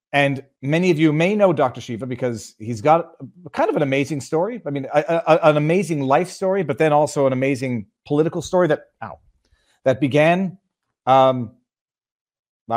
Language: English